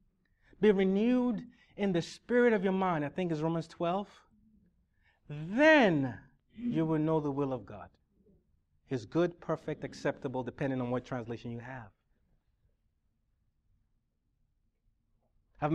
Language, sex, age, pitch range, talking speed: English, male, 30-49, 120-165 Hz, 120 wpm